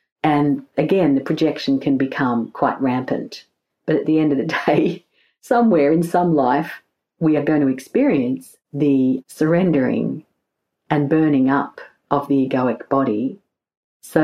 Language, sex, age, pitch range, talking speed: English, female, 50-69, 135-165 Hz, 145 wpm